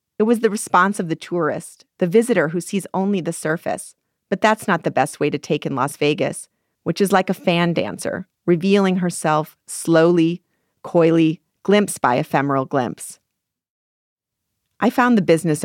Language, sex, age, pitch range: English, female, 40-59, 145-185 Hz